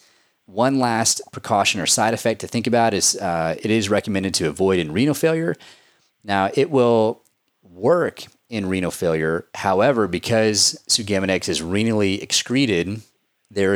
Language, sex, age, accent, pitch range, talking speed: English, male, 30-49, American, 90-115 Hz, 145 wpm